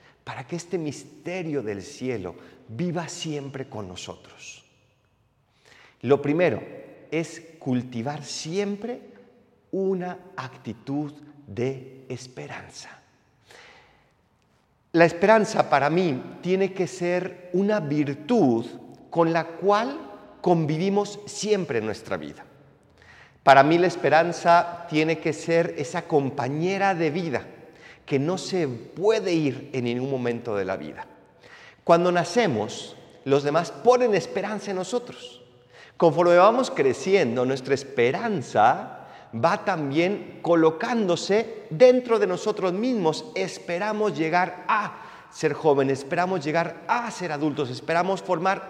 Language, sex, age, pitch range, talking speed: Spanish, male, 40-59, 145-195 Hz, 110 wpm